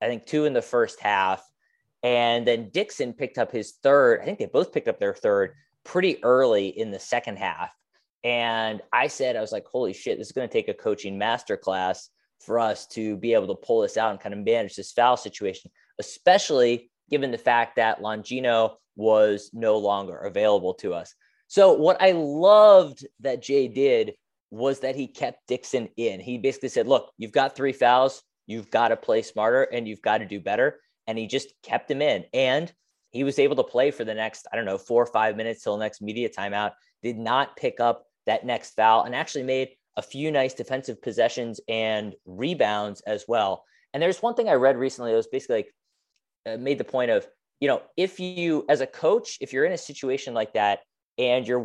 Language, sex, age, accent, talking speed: English, male, 20-39, American, 210 wpm